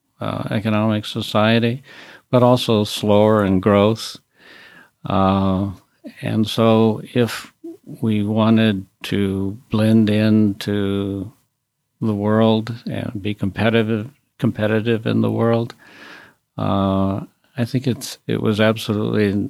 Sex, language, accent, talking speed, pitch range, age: male, English, American, 100 wpm, 100-115 Hz, 60-79